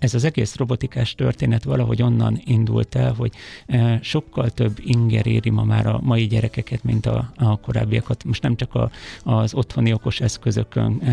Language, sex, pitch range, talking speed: Hungarian, male, 110-125 Hz, 155 wpm